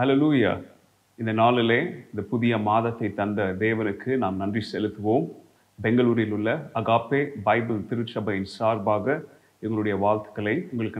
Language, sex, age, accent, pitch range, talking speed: Tamil, male, 30-49, native, 105-125 Hz, 110 wpm